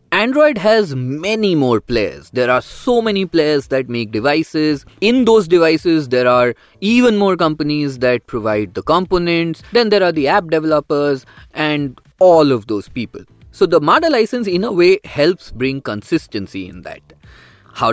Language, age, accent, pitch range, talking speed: English, 20-39, Indian, 115-170 Hz, 165 wpm